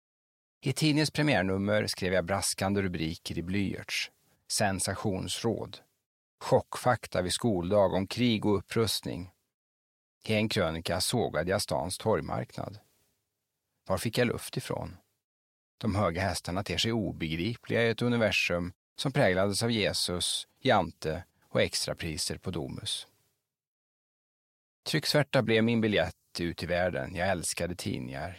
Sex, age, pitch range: male, 40-59, 90-115 Hz